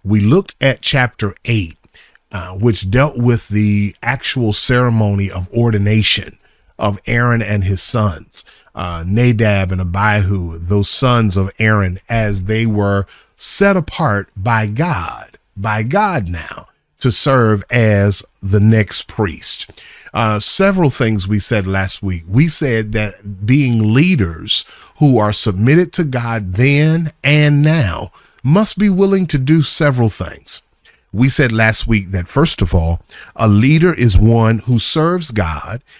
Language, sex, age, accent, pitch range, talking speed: English, male, 40-59, American, 100-130 Hz, 140 wpm